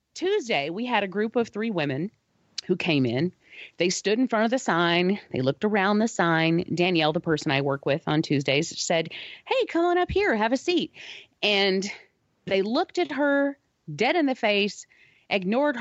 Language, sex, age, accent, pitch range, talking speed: English, female, 30-49, American, 175-255 Hz, 190 wpm